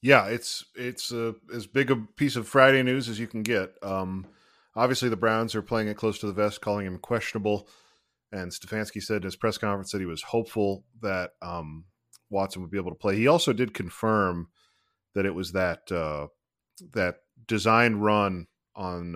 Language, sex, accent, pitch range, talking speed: English, male, American, 90-115 Hz, 190 wpm